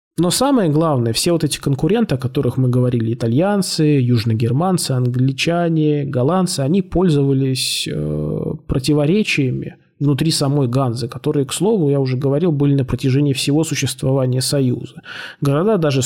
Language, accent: Russian, native